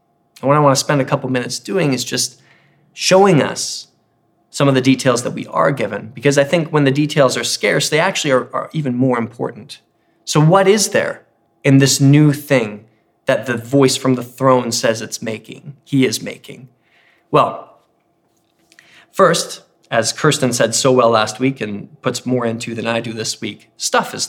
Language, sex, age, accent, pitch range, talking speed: English, male, 20-39, American, 120-145 Hz, 190 wpm